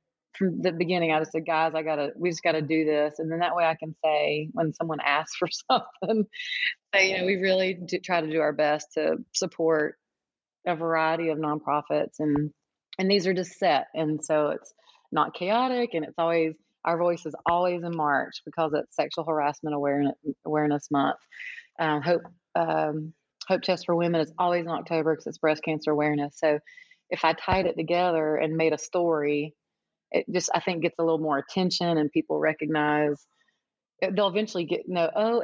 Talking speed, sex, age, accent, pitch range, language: 195 wpm, female, 30-49, American, 155-180 Hz, English